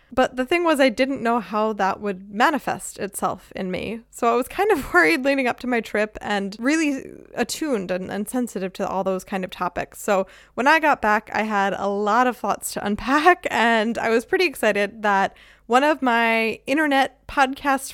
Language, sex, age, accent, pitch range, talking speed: English, female, 20-39, American, 205-270 Hz, 205 wpm